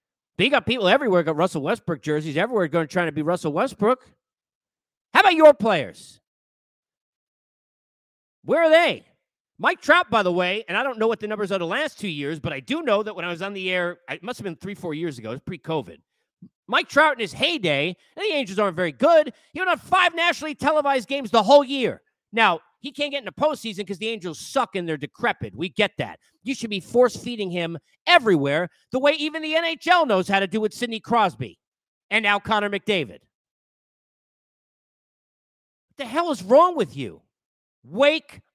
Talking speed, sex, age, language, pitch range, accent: 200 wpm, male, 40-59, English, 165-270 Hz, American